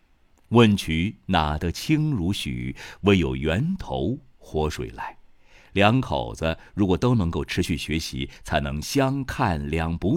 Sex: male